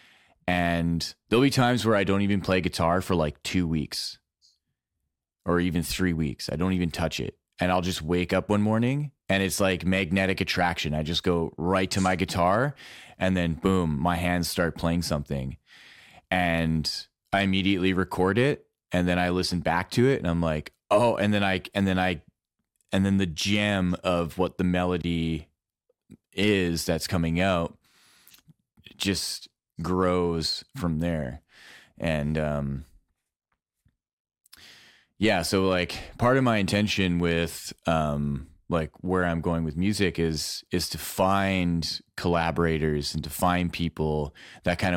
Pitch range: 80-95 Hz